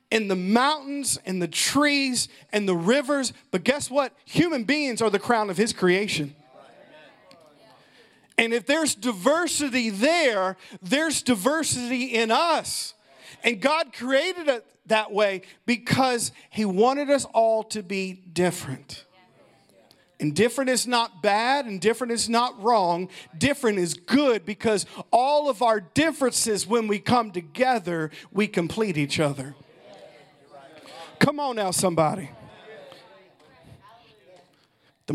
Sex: male